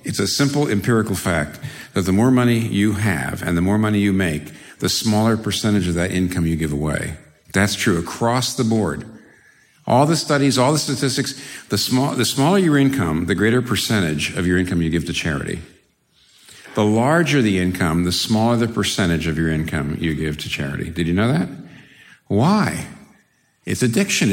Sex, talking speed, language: male, 185 wpm, English